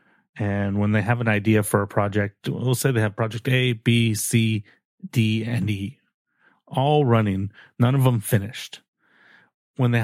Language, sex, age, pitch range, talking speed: English, male, 30-49, 105-125 Hz, 165 wpm